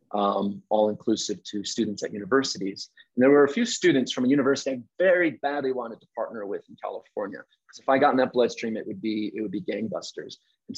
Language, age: English, 30-49